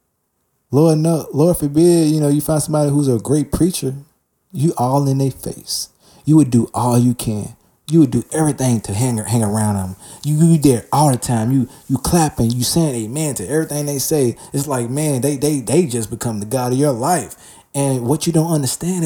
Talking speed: 210 wpm